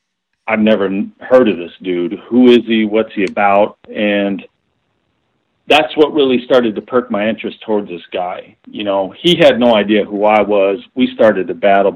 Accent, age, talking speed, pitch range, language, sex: American, 40-59, 185 wpm, 100-115 Hz, English, male